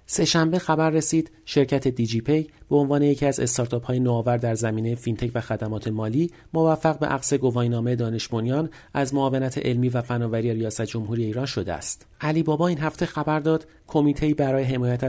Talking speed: 165 wpm